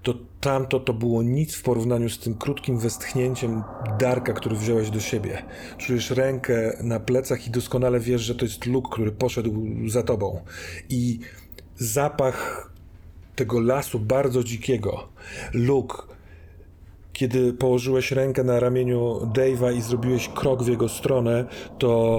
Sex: male